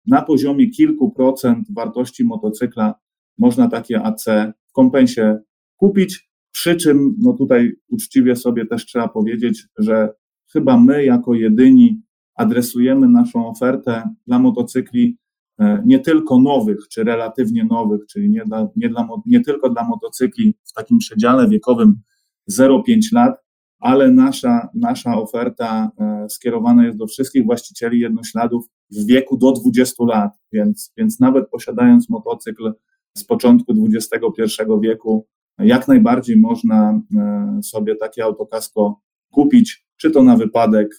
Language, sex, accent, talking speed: Polish, male, native, 125 wpm